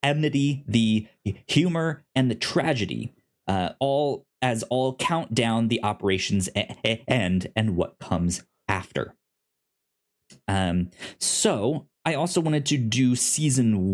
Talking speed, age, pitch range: 120 wpm, 20-39, 100-130 Hz